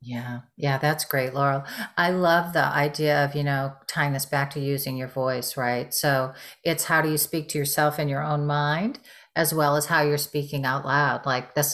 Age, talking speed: 40-59, 215 wpm